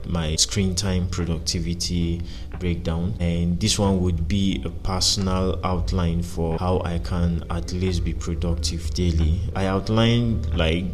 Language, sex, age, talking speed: English, male, 20-39, 135 wpm